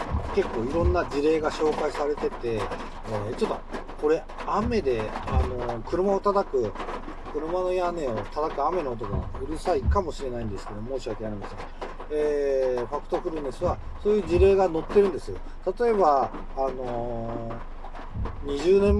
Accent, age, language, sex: native, 40-59, Japanese, male